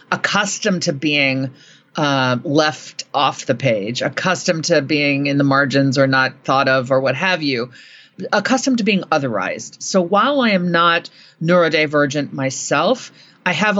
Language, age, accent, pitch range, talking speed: English, 40-59, American, 150-195 Hz, 150 wpm